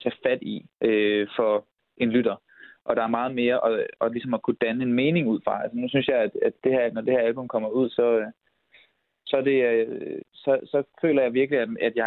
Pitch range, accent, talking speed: 115-145 Hz, native, 240 wpm